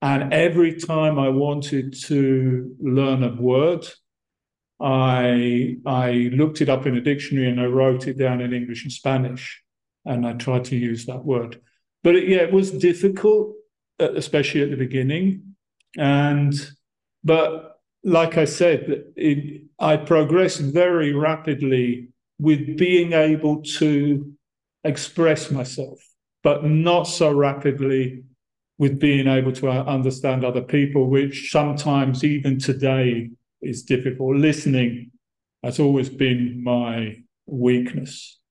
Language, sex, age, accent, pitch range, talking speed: English, male, 50-69, British, 125-155 Hz, 130 wpm